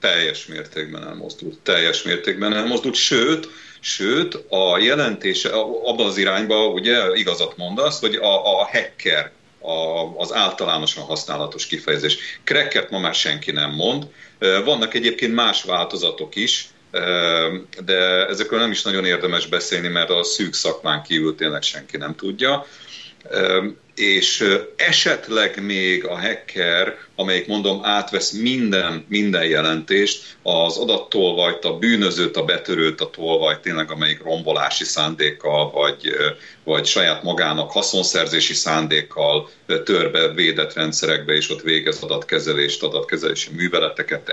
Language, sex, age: Hungarian, male, 40-59